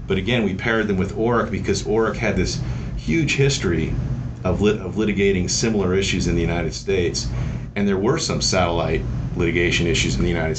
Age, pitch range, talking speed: 40-59, 100-130 Hz, 185 wpm